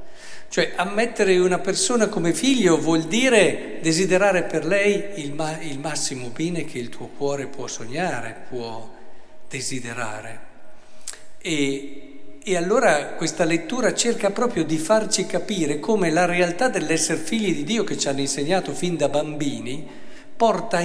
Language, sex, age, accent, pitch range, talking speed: Italian, male, 50-69, native, 150-205 Hz, 140 wpm